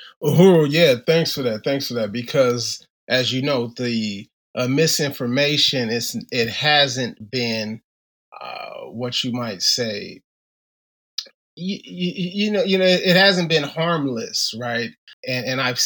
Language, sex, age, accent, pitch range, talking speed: English, male, 30-49, American, 115-160 Hz, 140 wpm